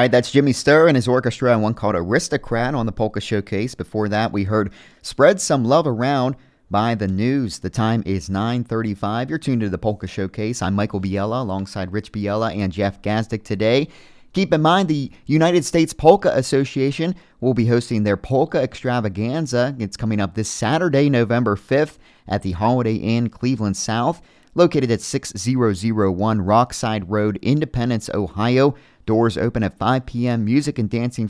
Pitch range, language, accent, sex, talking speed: 105-135 Hz, English, American, male, 170 wpm